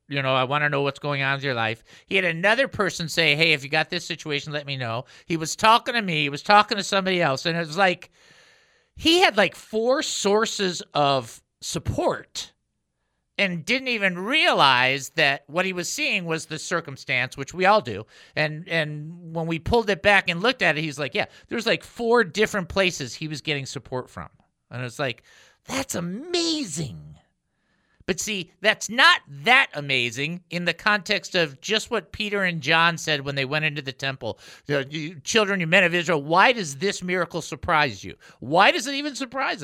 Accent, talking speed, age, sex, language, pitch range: American, 200 wpm, 50-69, male, English, 145-210 Hz